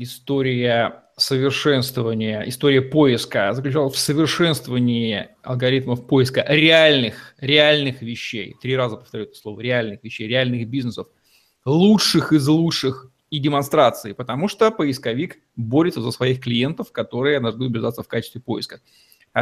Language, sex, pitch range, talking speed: Russian, male, 130-165 Hz, 125 wpm